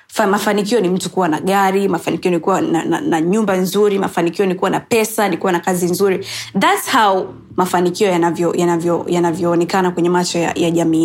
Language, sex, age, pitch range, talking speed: English, female, 20-39, 185-265 Hz, 195 wpm